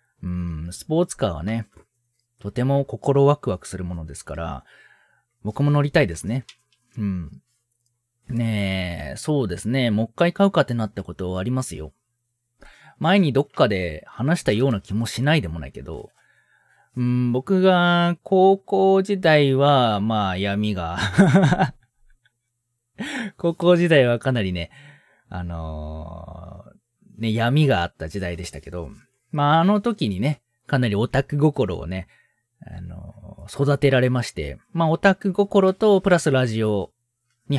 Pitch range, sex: 100-145 Hz, male